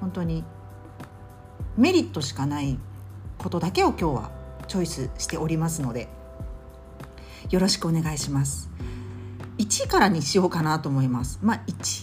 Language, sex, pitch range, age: Japanese, female, 130-205 Hz, 50-69